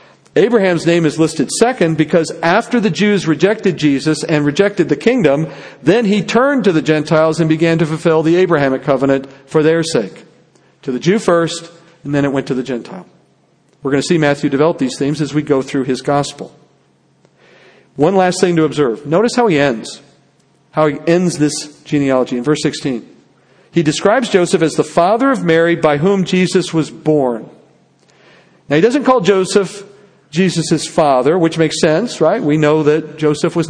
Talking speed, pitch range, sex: 180 wpm, 145-180 Hz, male